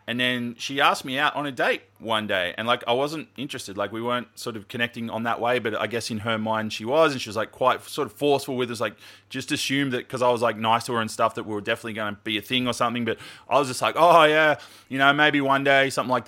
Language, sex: English, male